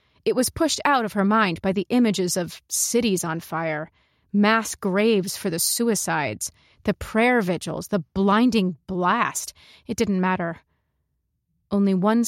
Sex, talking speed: female, 145 wpm